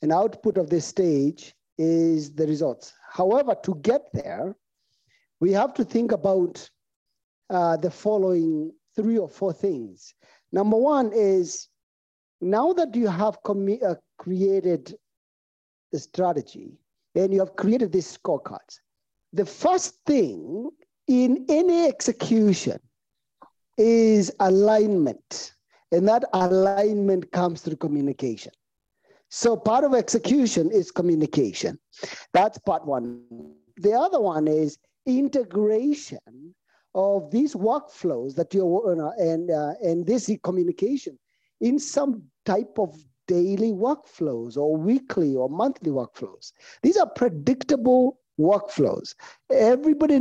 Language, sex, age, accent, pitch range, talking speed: English, male, 50-69, South African, 175-245 Hz, 115 wpm